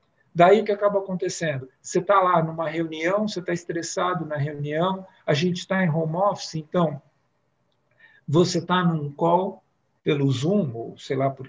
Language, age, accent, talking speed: Portuguese, 50-69, Brazilian, 165 wpm